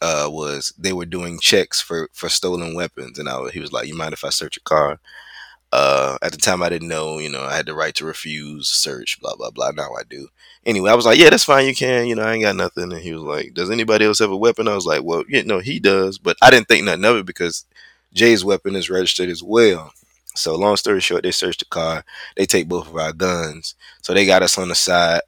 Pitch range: 85-130 Hz